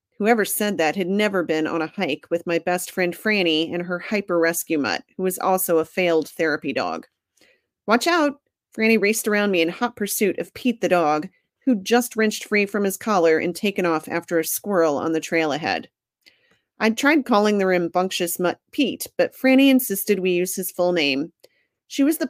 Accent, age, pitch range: American, 40-59, 165-215 Hz